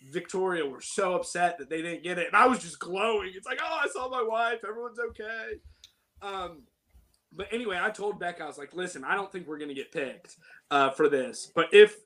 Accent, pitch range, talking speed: American, 170-225 Hz, 225 wpm